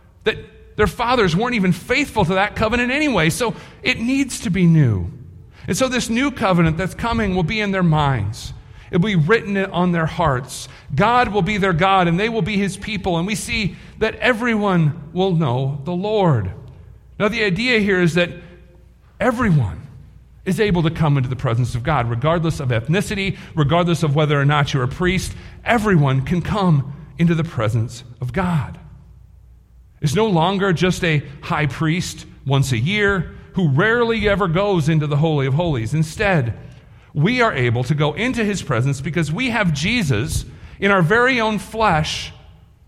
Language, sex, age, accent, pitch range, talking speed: English, male, 40-59, American, 140-200 Hz, 180 wpm